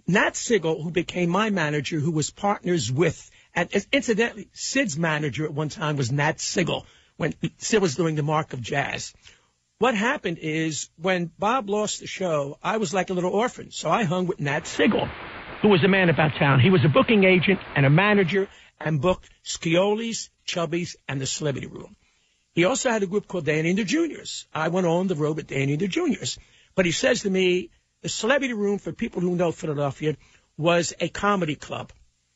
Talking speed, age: 200 wpm, 50-69